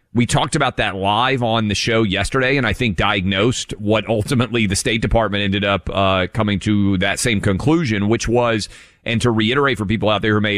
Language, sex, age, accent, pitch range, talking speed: English, male, 30-49, American, 100-130 Hz, 210 wpm